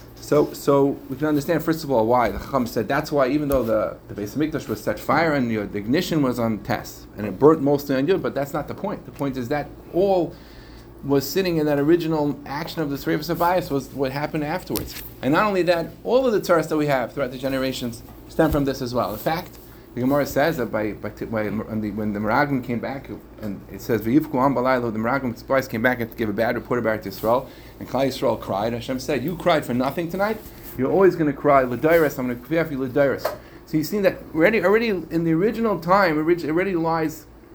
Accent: American